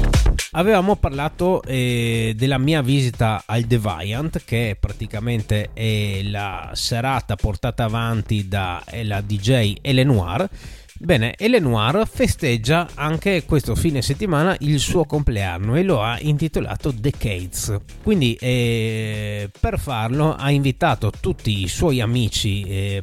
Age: 30-49